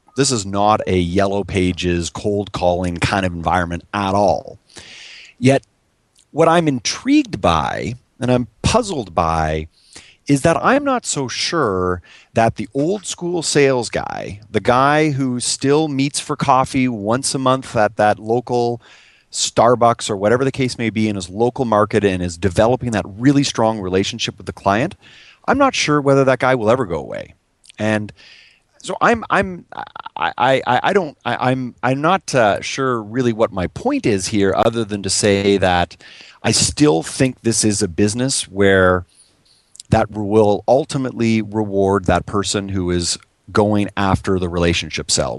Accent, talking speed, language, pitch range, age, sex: American, 165 wpm, English, 100-130 Hz, 30-49, male